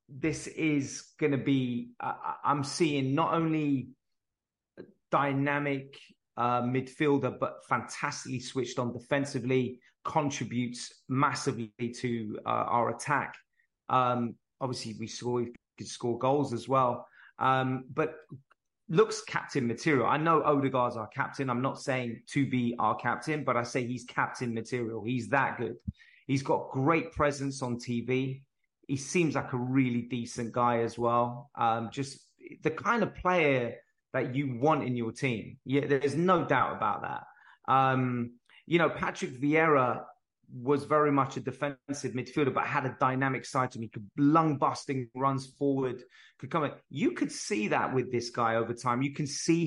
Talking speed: 160 wpm